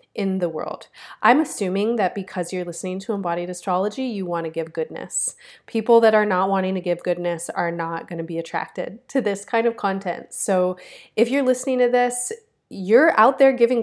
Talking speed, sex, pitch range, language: 200 wpm, female, 180-230 Hz, English